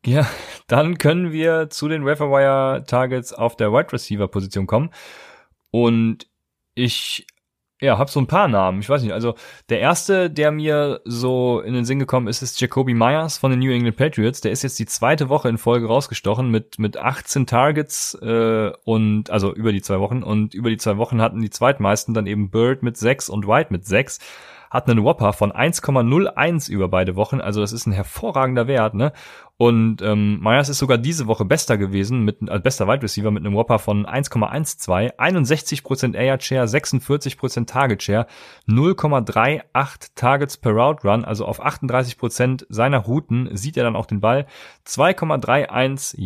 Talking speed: 175 wpm